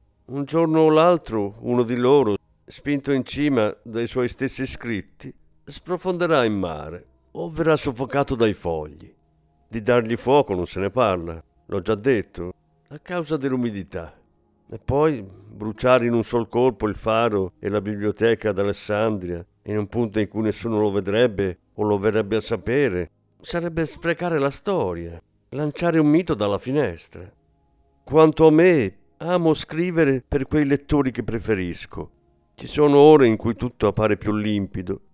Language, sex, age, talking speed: Italian, male, 50-69, 150 wpm